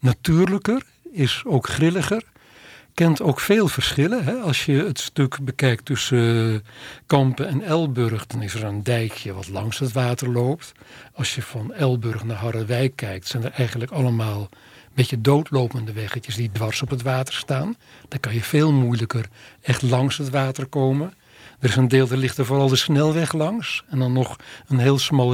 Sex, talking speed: male, 180 wpm